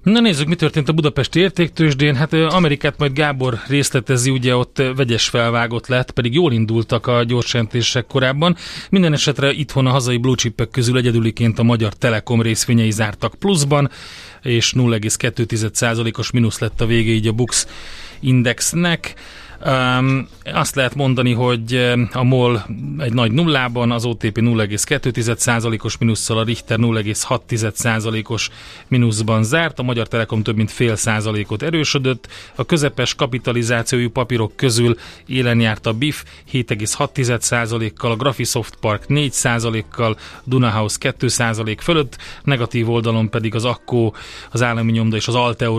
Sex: male